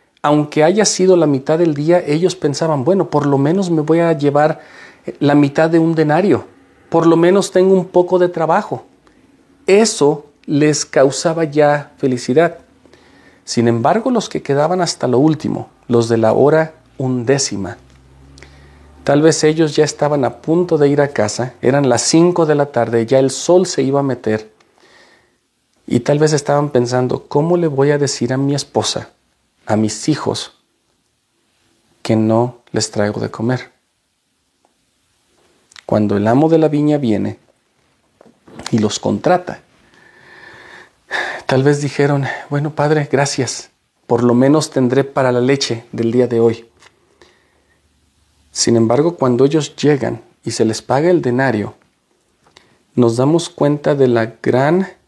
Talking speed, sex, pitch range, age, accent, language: 150 wpm, male, 120-155 Hz, 40-59, Mexican, Spanish